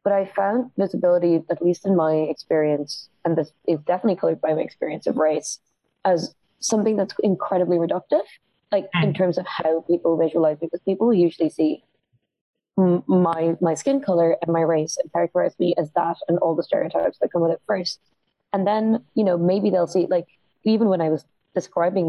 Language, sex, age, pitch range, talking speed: English, female, 20-39, 165-215 Hz, 195 wpm